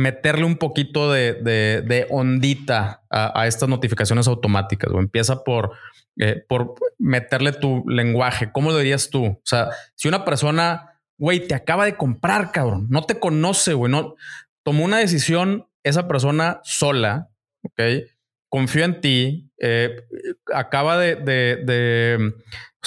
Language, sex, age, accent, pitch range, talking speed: Spanish, male, 30-49, Mexican, 125-170 Hz, 150 wpm